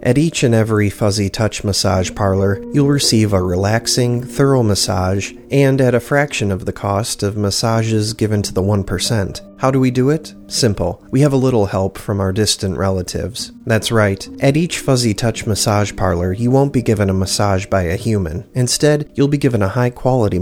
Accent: American